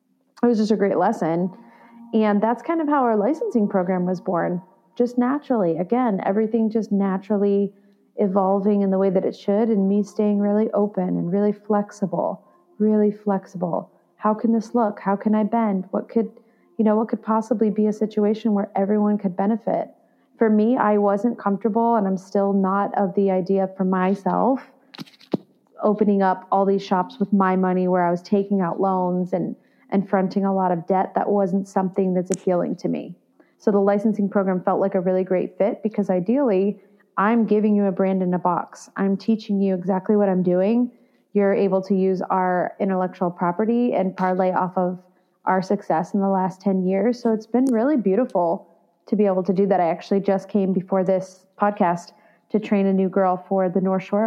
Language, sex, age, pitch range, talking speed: English, female, 30-49, 190-215 Hz, 190 wpm